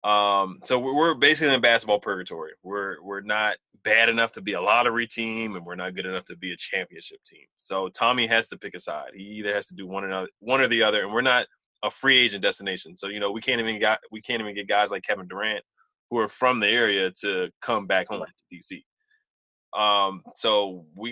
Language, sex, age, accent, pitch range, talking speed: English, male, 20-39, American, 100-125 Hz, 235 wpm